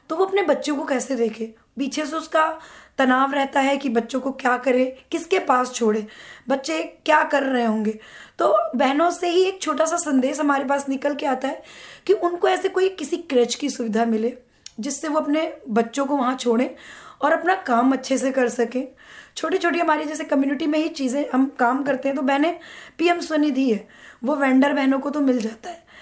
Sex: female